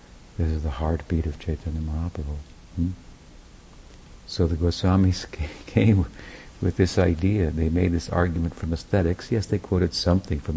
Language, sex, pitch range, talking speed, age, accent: English, male, 75-90 Hz, 150 wpm, 60-79, American